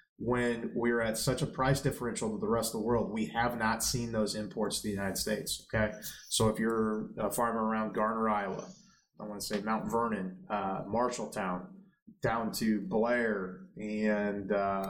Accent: American